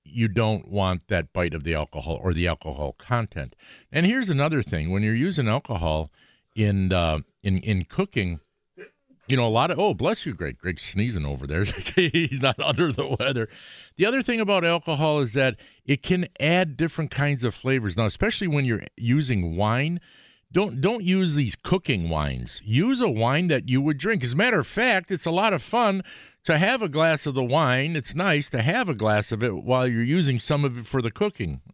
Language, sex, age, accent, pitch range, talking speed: English, male, 50-69, American, 105-165 Hz, 210 wpm